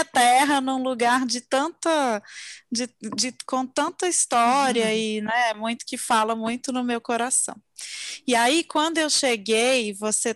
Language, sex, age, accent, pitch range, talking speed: Portuguese, female, 20-39, Brazilian, 220-265 Hz, 145 wpm